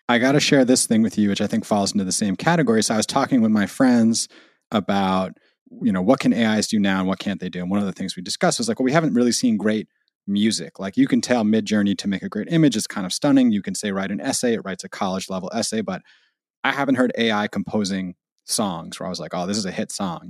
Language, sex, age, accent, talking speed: English, male, 30-49, American, 280 wpm